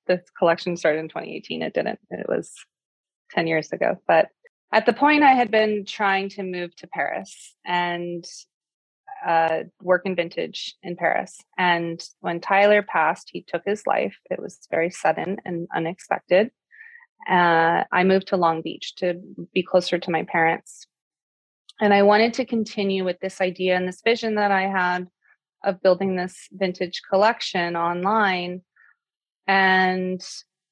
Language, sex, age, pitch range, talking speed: English, female, 20-39, 175-200 Hz, 150 wpm